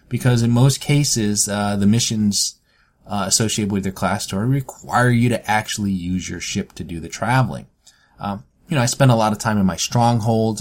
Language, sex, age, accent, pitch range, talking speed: English, male, 30-49, American, 95-120 Hz, 205 wpm